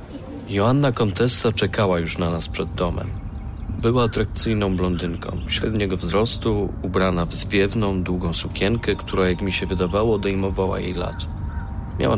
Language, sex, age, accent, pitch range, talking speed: Polish, male, 40-59, native, 90-100 Hz, 135 wpm